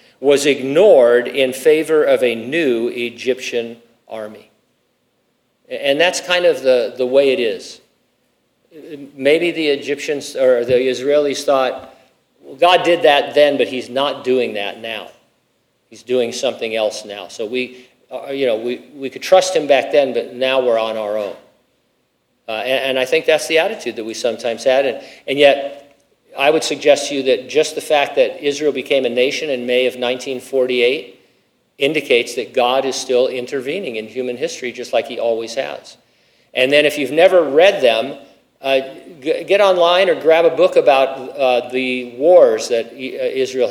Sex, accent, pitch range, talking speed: male, American, 125-175 Hz, 170 wpm